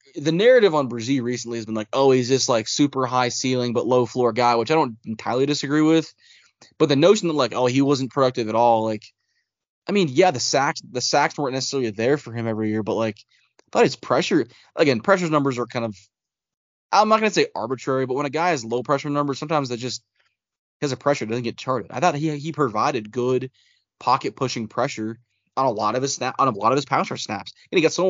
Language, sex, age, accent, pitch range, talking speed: English, male, 20-39, American, 115-145 Hz, 235 wpm